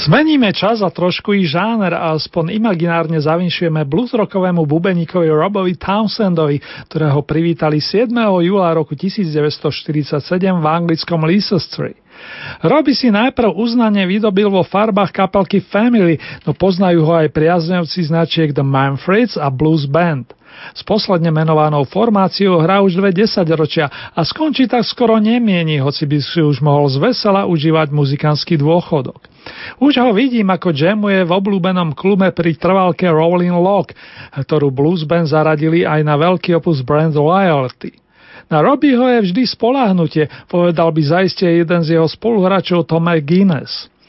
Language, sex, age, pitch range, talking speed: Slovak, male, 40-59, 155-200 Hz, 140 wpm